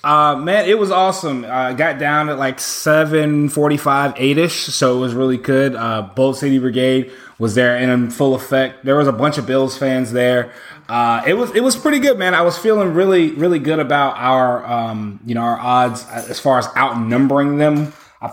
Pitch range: 125-160 Hz